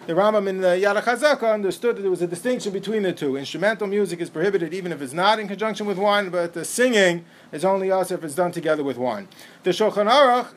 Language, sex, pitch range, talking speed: English, male, 175-215 Hz, 240 wpm